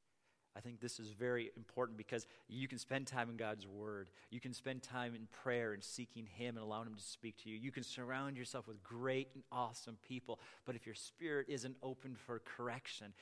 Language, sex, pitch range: English, male, 105-130 Hz